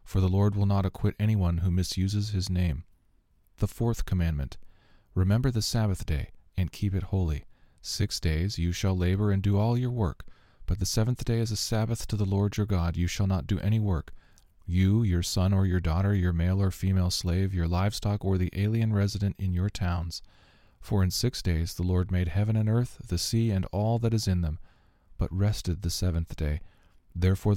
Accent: American